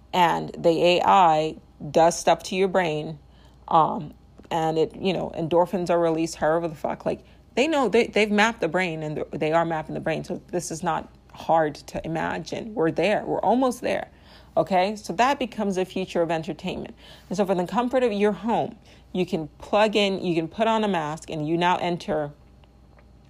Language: English